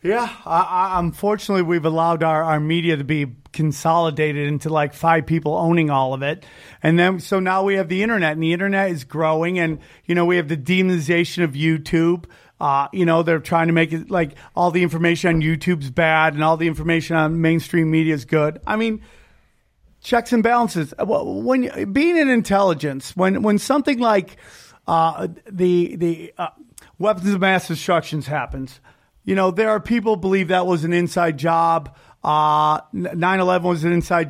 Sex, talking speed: male, 185 wpm